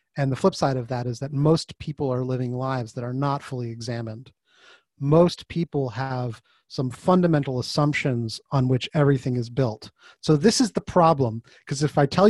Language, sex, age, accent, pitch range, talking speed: English, male, 30-49, American, 130-175 Hz, 185 wpm